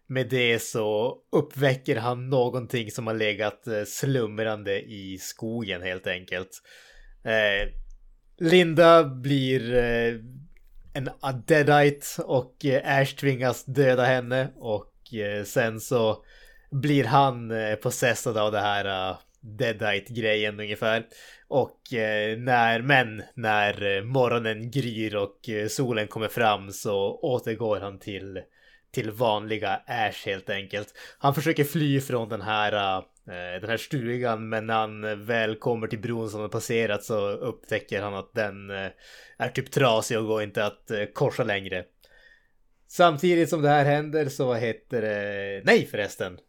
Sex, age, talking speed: male, 20-39, 130 wpm